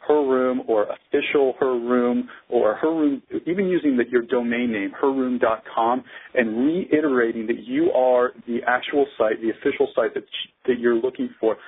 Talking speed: 170 wpm